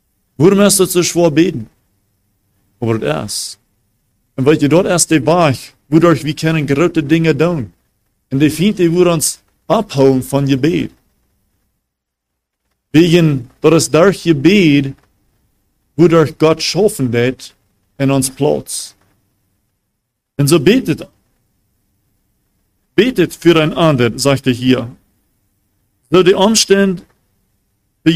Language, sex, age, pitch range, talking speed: English, male, 40-59, 100-155 Hz, 130 wpm